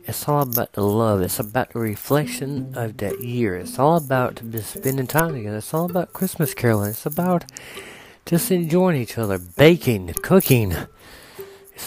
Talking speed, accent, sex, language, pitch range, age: 160 wpm, American, male, English, 110-150 Hz, 40-59